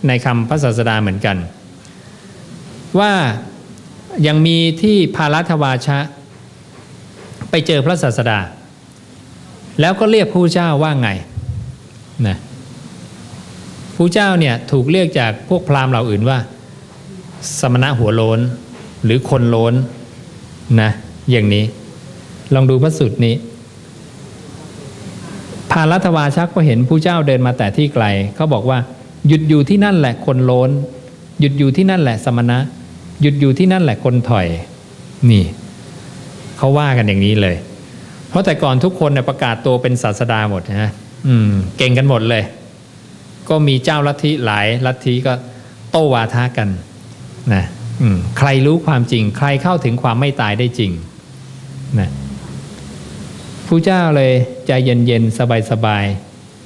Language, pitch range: English, 115-150 Hz